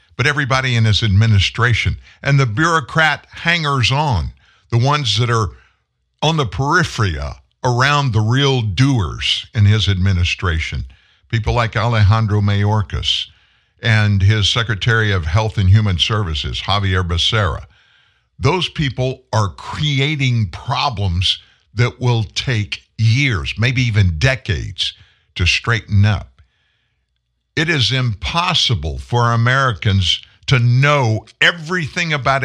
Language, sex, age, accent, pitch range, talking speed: English, male, 50-69, American, 95-130 Hz, 115 wpm